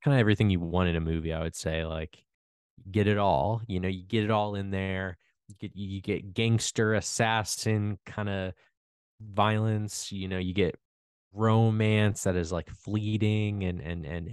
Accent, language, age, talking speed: American, English, 20-39, 185 wpm